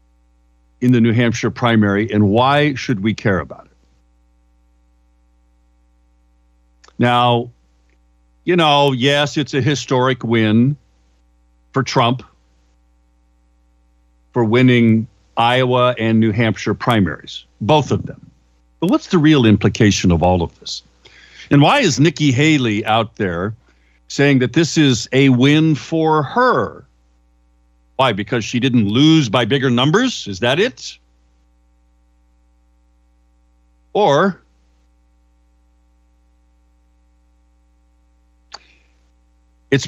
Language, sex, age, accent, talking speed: English, male, 50-69, American, 105 wpm